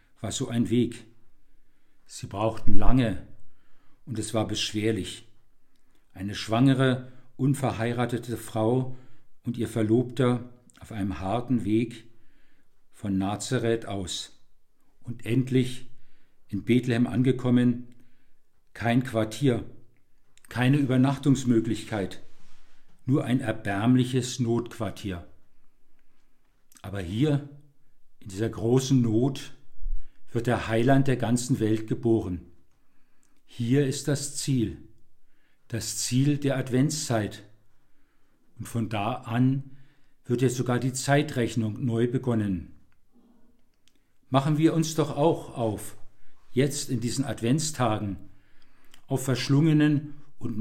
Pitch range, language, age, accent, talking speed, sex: 110-135 Hz, German, 50-69, German, 100 wpm, male